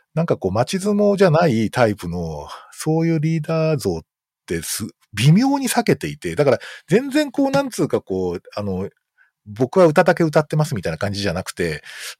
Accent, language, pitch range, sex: native, Japanese, 95-155 Hz, male